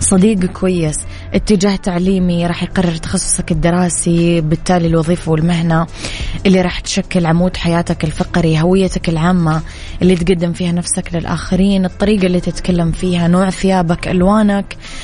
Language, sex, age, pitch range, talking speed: Arabic, female, 20-39, 170-190 Hz, 125 wpm